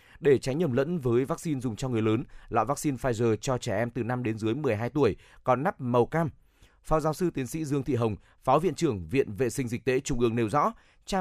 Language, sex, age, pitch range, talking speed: Vietnamese, male, 20-39, 115-145 Hz, 250 wpm